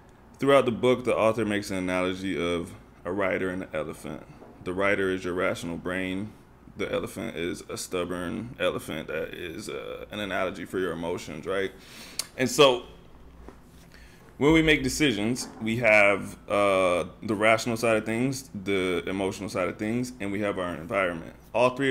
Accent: American